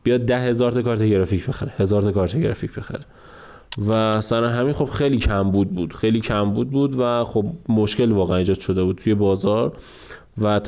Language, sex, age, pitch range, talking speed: Persian, male, 20-39, 105-130 Hz, 185 wpm